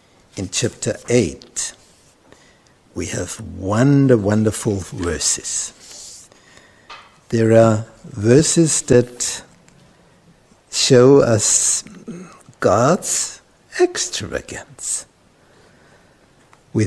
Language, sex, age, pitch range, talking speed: English, male, 60-79, 100-140 Hz, 65 wpm